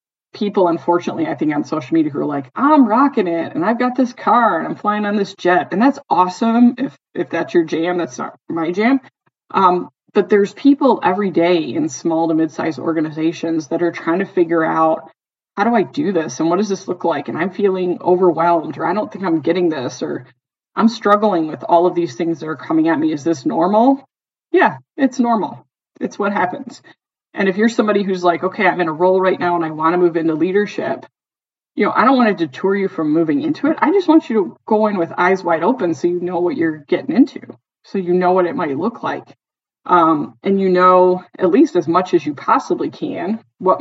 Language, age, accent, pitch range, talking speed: English, 20-39, American, 170-225 Hz, 230 wpm